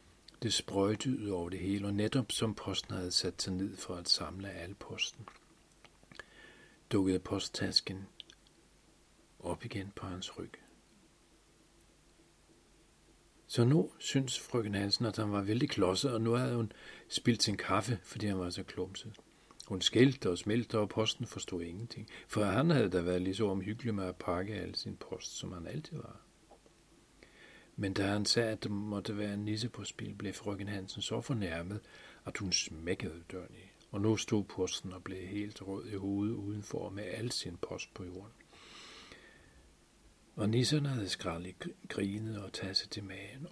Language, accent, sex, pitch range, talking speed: Danish, native, male, 95-110 Hz, 170 wpm